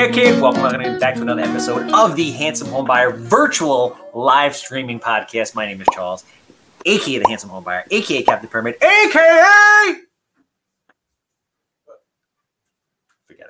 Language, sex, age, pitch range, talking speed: English, male, 30-49, 130-175 Hz, 130 wpm